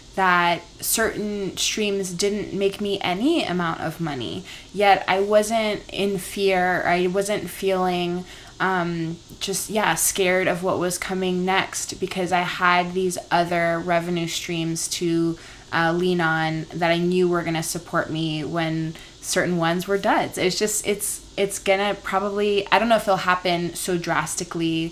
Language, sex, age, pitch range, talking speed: English, female, 20-39, 165-195 Hz, 155 wpm